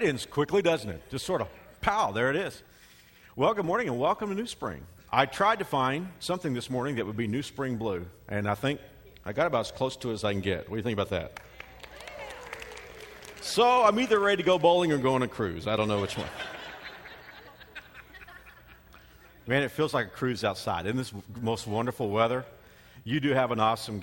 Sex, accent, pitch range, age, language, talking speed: male, American, 105-140 Hz, 50-69, English, 215 wpm